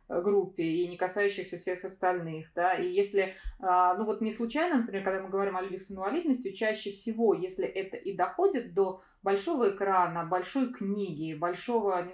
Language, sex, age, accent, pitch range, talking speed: Russian, female, 20-39, native, 175-240 Hz, 170 wpm